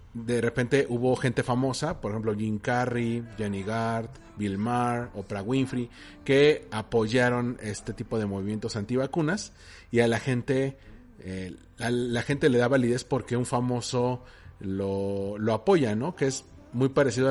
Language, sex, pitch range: Spanish, male, 115-145 Hz